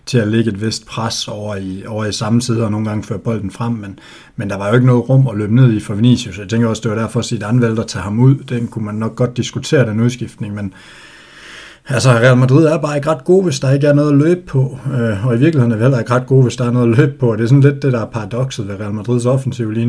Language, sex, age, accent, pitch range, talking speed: Danish, male, 60-79, native, 110-130 Hz, 310 wpm